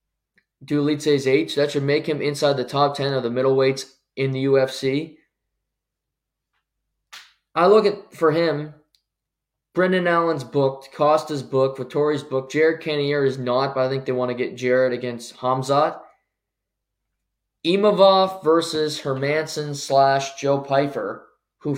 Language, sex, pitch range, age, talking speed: English, male, 125-145 Hz, 20-39, 135 wpm